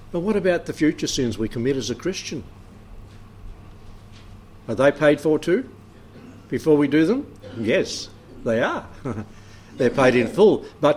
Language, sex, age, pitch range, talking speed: English, male, 60-79, 105-135 Hz, 155 wpm